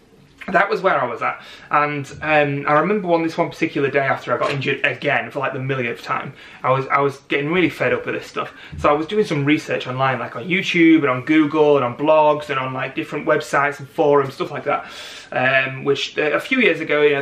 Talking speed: 245 wpm